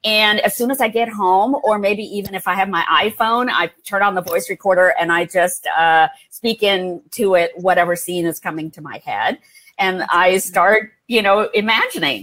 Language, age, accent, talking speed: English, 40-59, American, 200 wpm